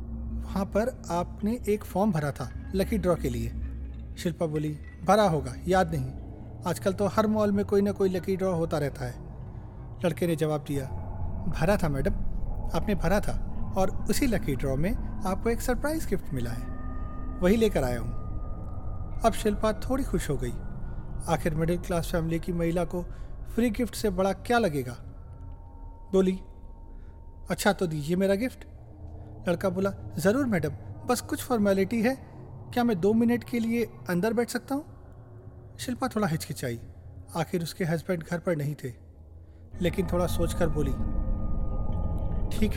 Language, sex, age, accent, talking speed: Hindi, male, 40-59, native, 160 wpm